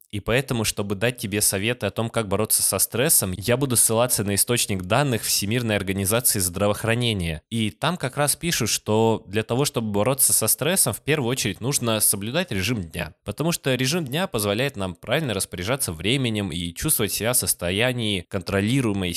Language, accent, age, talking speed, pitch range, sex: Russian, native, 20-39, 170 wpm, 95-125 Hz, male